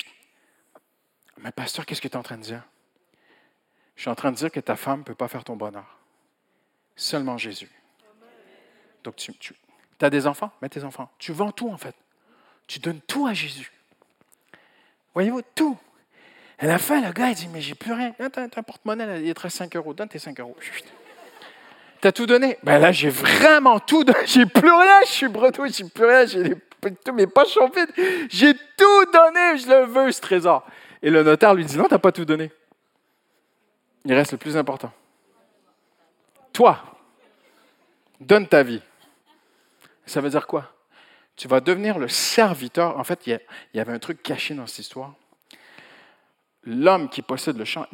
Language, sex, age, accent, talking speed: French, male, 50-69, French, 185 wpm